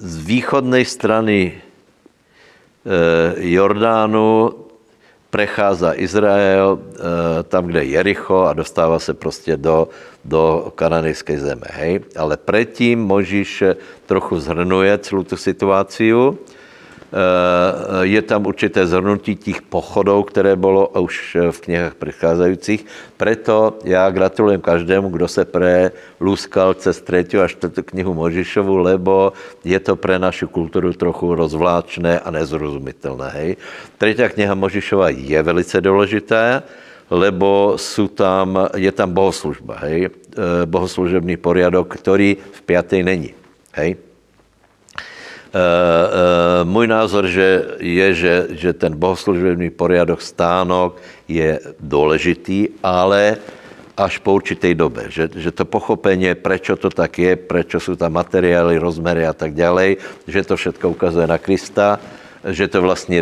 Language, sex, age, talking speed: Slovak, male, 60-79, 120 wpm